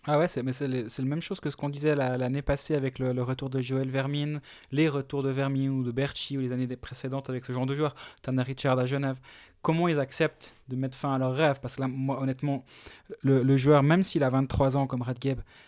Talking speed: 240 wpm